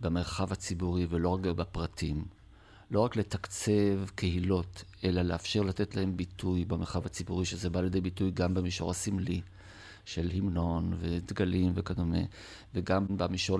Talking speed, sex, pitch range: 130 wpm, male, 90-105 Hz